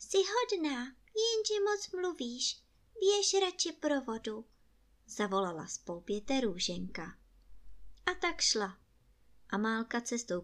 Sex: male